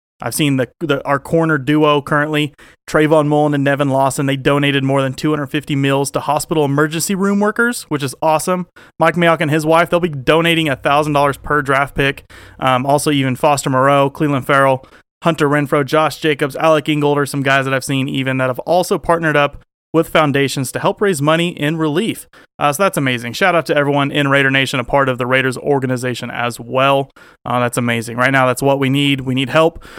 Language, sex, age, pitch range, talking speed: English, male, 30-49, 130-160 Hz, 205 wpm